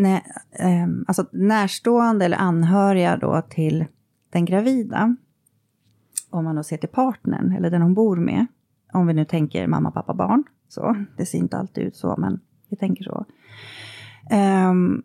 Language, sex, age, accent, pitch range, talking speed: Swedish, female, 30-49, native, 155-200 Hz, 150 wpm